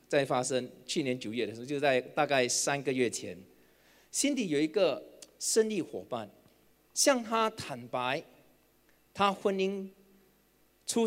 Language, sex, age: Chinese, male, 40-59